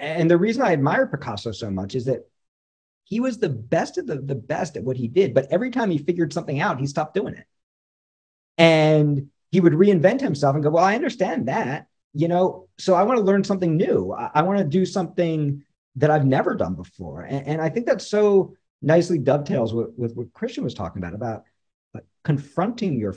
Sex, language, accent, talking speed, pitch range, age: male, English, American, 210 wpm, 115-180 Hz, 40-59